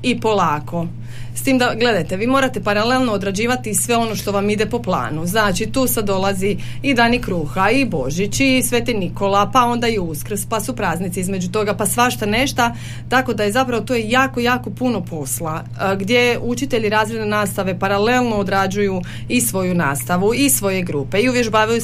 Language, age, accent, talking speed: Croatian, 30-49, native, 180 wpm